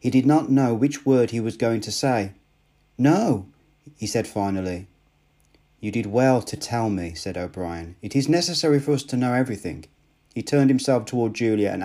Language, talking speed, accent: English, 185 wpm, British